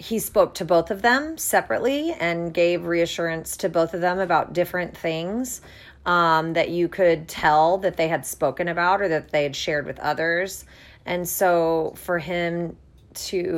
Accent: American